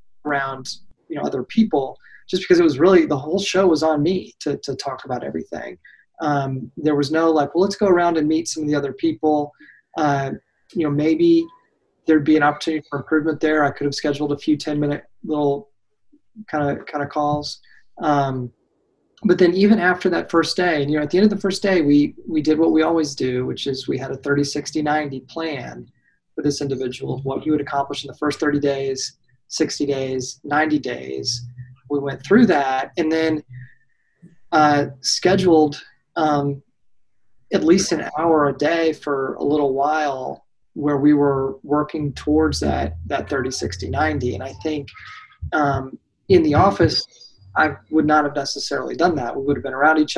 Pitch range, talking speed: 140-160 Hz, 190 wpm